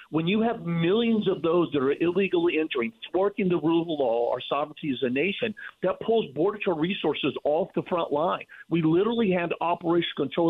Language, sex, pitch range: English, male, 160-230 Hz